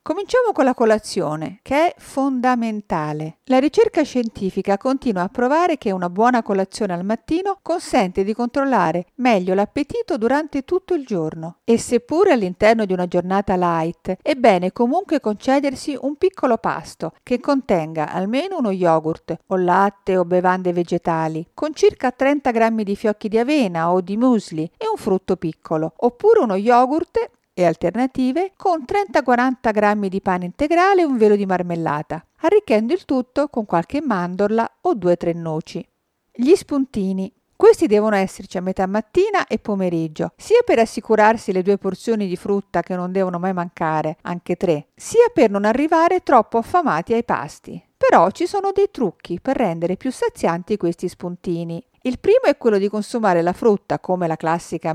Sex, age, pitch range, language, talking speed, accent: female, 50-69, 180-280 Hz, Italian, 160 wpm, native